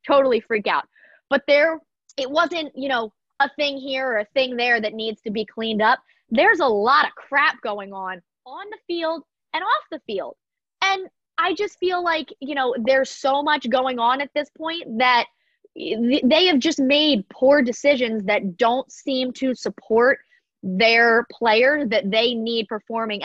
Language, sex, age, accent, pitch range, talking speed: English, female, 20-39, American, 225-300 Hz, 180 wpm